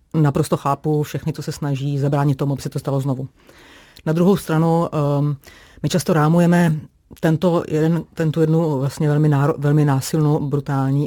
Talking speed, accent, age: 150 wpm, native, 30-49